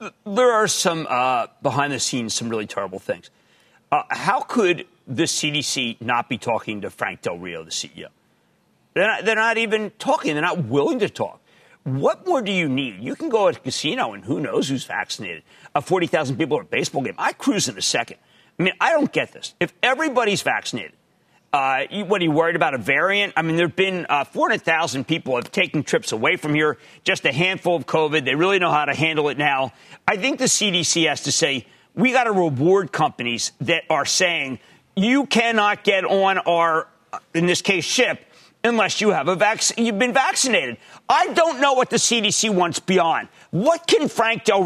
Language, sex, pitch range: English, male, 155-225 Hz